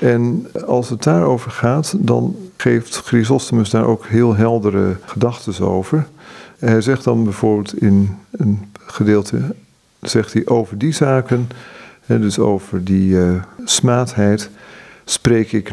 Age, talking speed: 50-69, 125 wpm